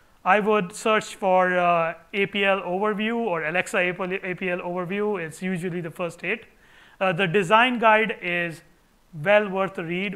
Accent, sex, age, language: Indian, male, 30-49, English